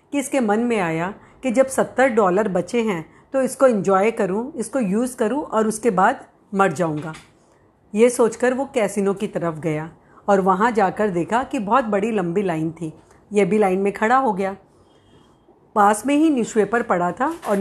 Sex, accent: female, native